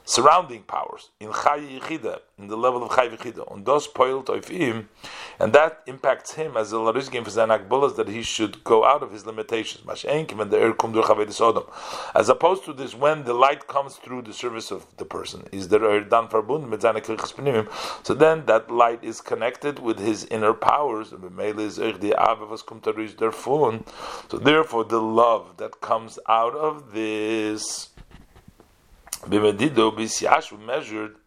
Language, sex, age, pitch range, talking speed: English, male, 40-59, 110-135 Hz, 120 wpm